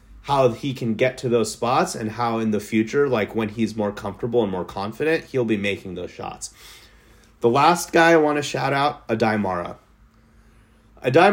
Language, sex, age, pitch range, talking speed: English, male, 30-49, 110-135 Hz, 190 wpm